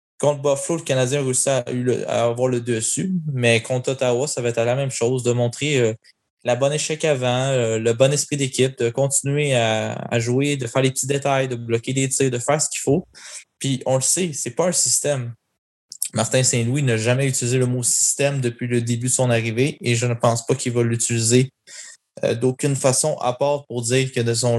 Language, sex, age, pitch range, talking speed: French, male, 20-39, 115-135 Hz, 220 wpm